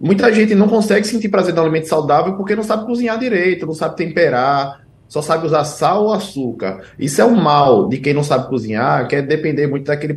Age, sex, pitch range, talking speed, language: 20-39, male, 120-180 Hz, 225 wpm, Portuguese